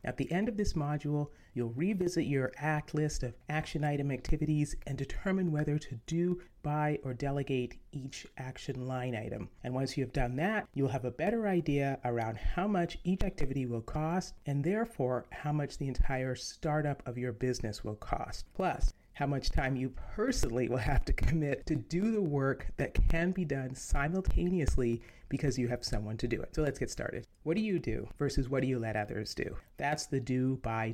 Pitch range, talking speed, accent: 125-165 Hz, 200 wpm, American